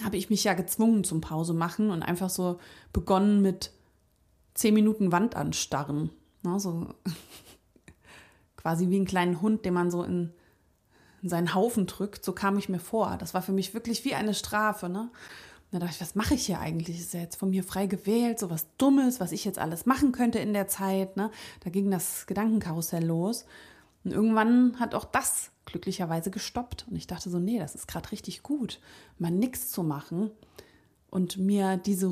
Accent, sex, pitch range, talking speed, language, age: German, female, 180-220 Hz, 185 wpm, German, 30-49